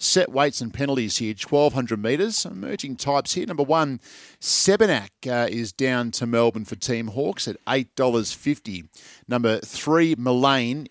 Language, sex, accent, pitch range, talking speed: English, male, Australian, 115-145 Hz, 160 wpm